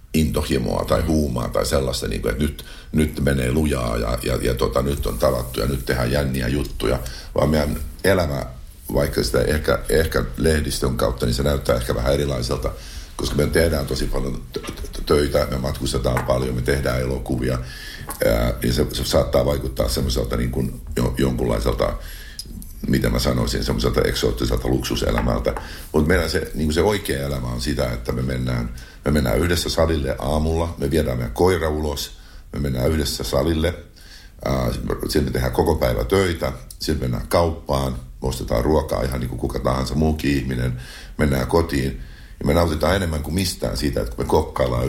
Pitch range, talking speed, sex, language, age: 65-75 Hz, 165 wpm, male, Finnish, 50-69